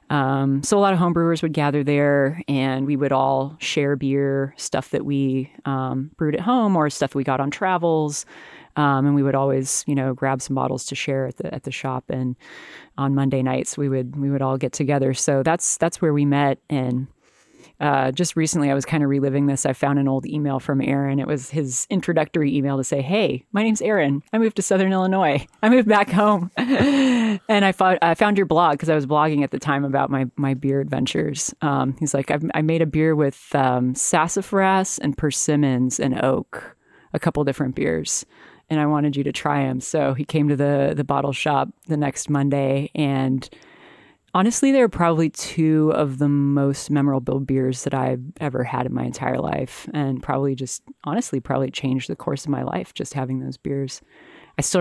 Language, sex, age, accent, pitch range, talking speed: English, female, 30-49, American, 135-155 Hz, 210 wpm